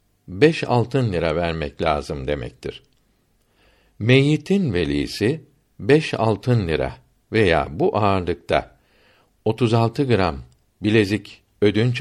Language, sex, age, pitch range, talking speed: Turkish, male, 60-79, 95-130 Hz, 90 wpm